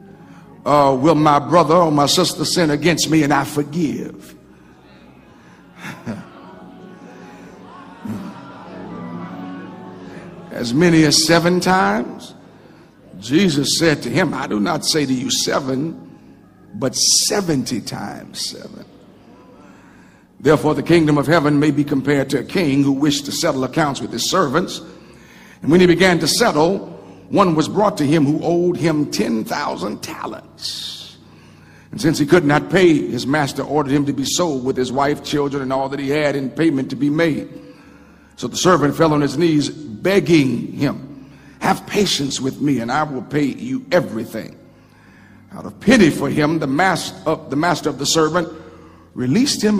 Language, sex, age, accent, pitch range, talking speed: English, male, 60-79, American, 135-170 Hz, 150 wpm